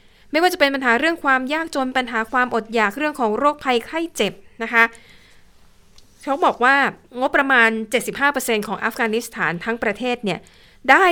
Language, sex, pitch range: Thai, female, 205-255 Hz